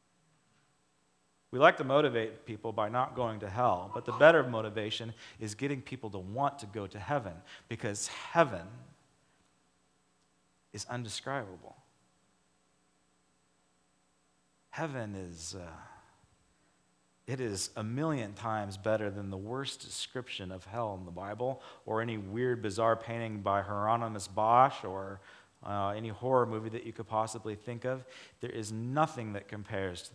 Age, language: 40-59, English